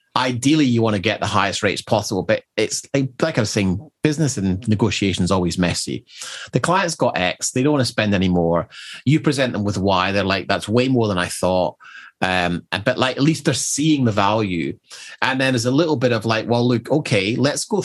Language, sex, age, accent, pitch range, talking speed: English, male, 30-49, British, 100-130 Hz, 225 wpm